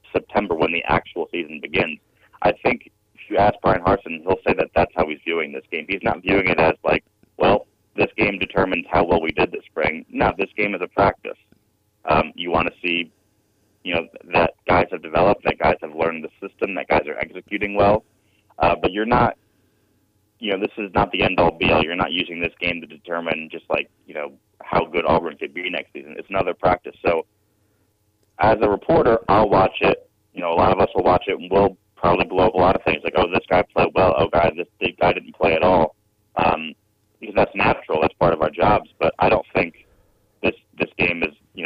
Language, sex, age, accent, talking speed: English, male, 30-49, American, 225 wpm